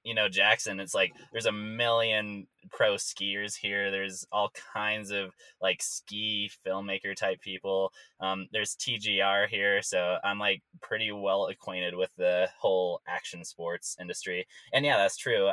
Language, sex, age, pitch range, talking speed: English, male, 20-39, 95-110 Hz, 155 wpm